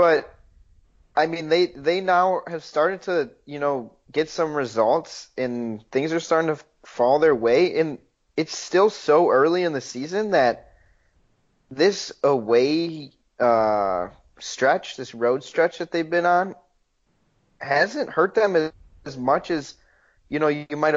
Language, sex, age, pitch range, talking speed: English, male, 30-49, 115-160 Hz, 150 wpm